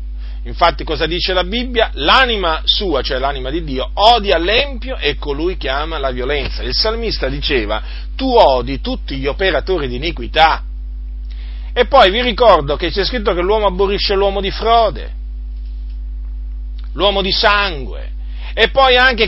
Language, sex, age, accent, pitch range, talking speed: Italian, male, 40-59, native, 145-215 Hz, 150 wpm